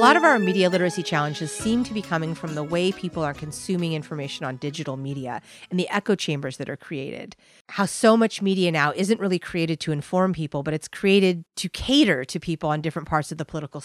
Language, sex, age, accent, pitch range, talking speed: English, female, 40-59, American, 155-210 Hz, 225 wpm